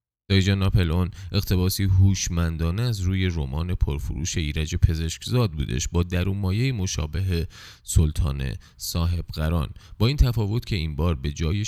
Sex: male